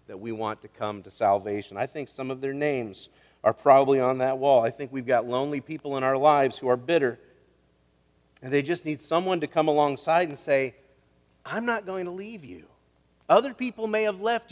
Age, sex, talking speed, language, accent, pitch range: 40-59, male, 210 wpm, English, American, 145-235 Hz